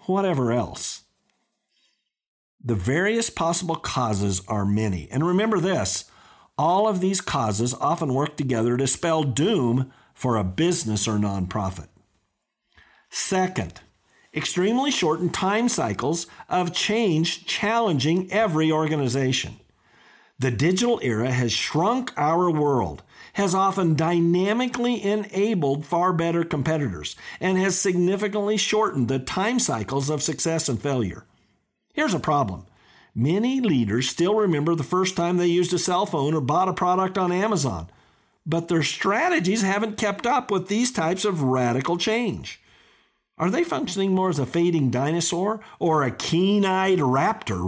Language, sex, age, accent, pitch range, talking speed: English, male, 50-69, American, 130-195 Hz, 135 wpm